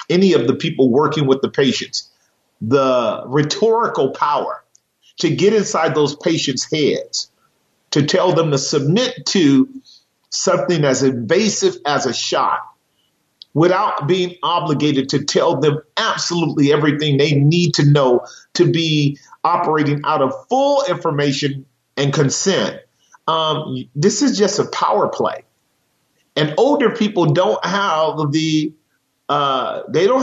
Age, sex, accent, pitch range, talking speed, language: 40-59, male, American, 145-190 Hz, 130 wpm, English